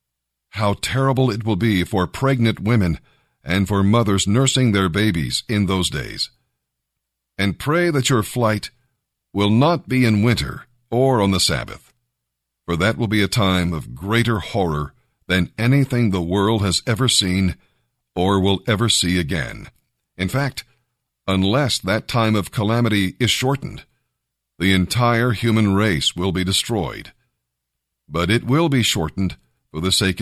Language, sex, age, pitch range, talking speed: English, male, 50-69, 95-120 Hz, 150 wpm